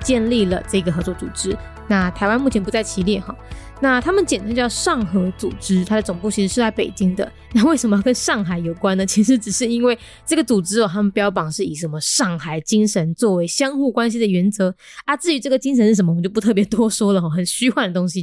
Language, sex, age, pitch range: Chinese, female, 20-39, 190-250 Hz